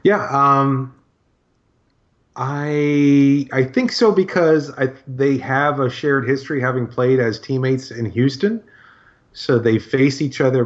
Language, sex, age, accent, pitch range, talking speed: English, male, 30-49, American, 115-130 Hz, 135 wpm